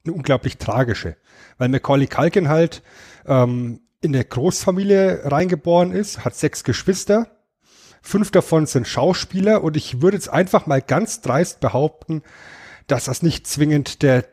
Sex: male